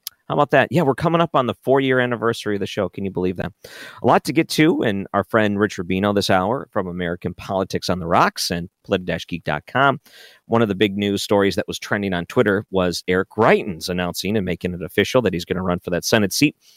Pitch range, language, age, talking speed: 95-125 Hz, English, 40-59, 240 wpm